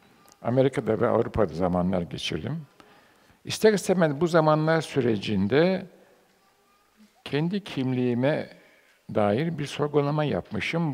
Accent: native